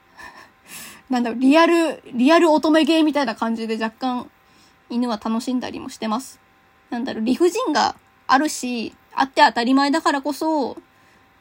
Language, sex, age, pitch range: Japanese, female, 20-39, 240-310 Hz